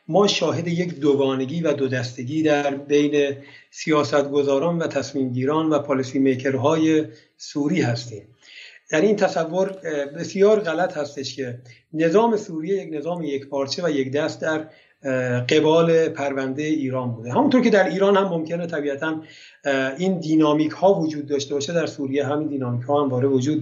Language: Persian